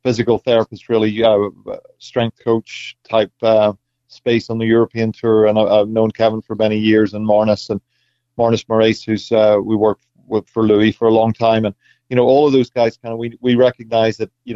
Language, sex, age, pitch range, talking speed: English, male, 30-49, 105-120 Hz, 210 wpm